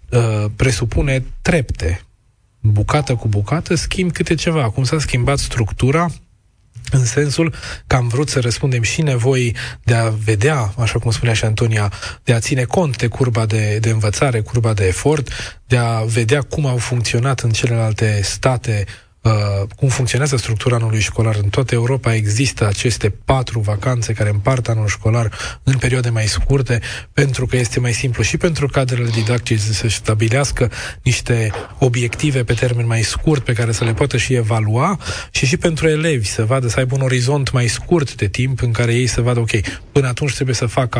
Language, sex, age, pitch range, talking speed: Romanian, male, 20-39, 110-130 Hz, 175 wpm